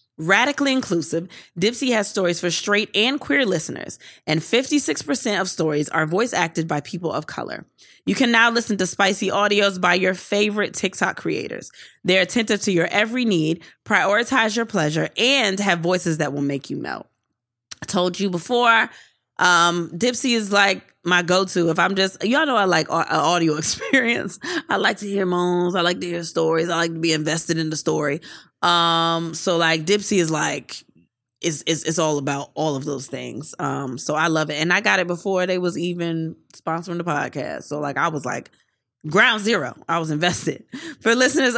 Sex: female